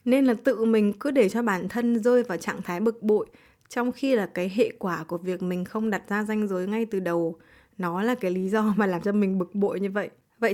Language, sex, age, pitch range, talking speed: Vietnamese, female, 20-39, 185-235 Hz, 260 wpm